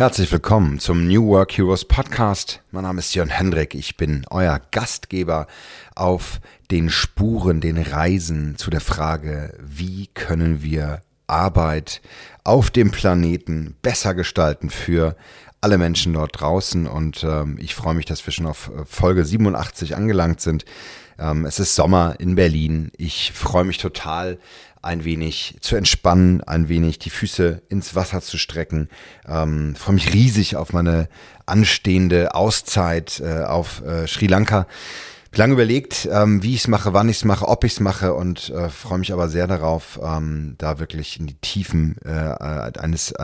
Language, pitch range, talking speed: English, 75-95 Hz, 160 wpm